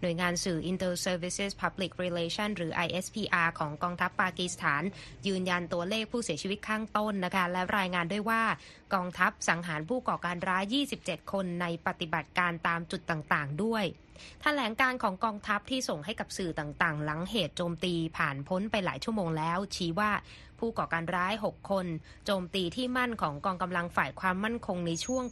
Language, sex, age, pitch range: Thai, female, 20-39, 170-210 Hz